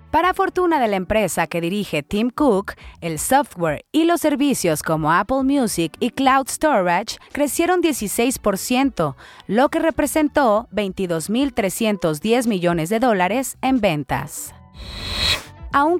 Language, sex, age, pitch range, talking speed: Spanish, female, 30-49, 185-280 Hz, 120 wpm